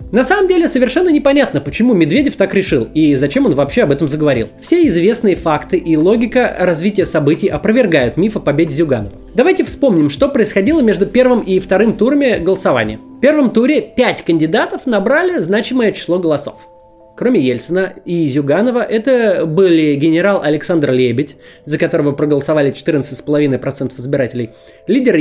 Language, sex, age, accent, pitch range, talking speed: Russian, male, 20-39, native, 150-230 Hz, 150 wpm